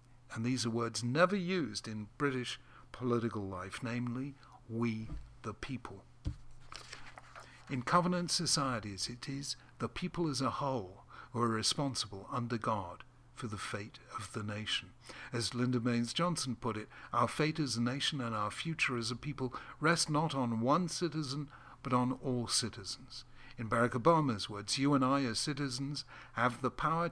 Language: English